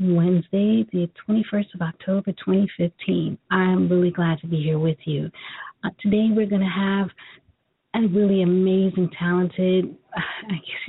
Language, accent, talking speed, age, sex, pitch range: English, American, 145 wpm, 40-59, female, 180-200 Hz